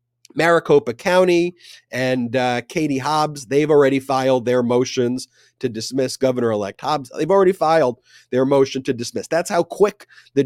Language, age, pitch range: English, 30-49, 125-170 Hz